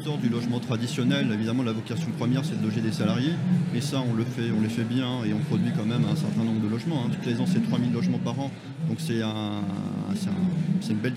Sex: male